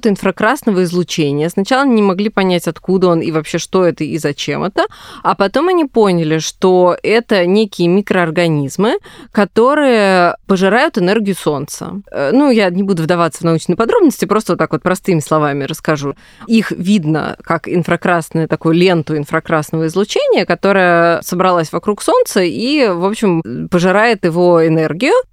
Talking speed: 140 wpm